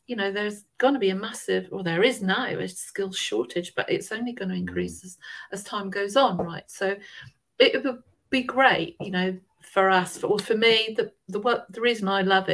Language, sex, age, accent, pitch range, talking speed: English, female, 40-59, British, 180-255 Hz, 230 wpm